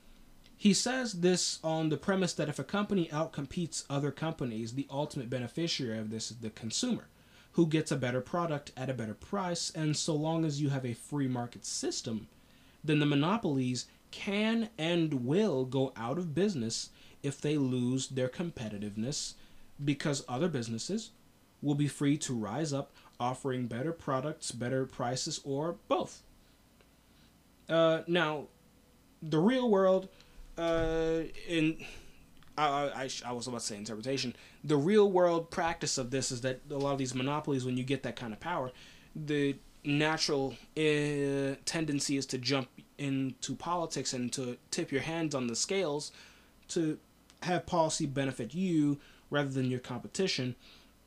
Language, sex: English, male